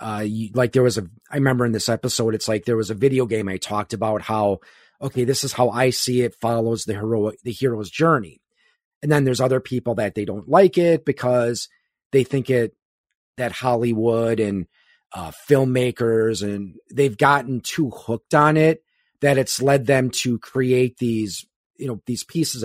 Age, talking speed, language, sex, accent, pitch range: 30-49, 190 wpm, English, male, American, 115-140 Hz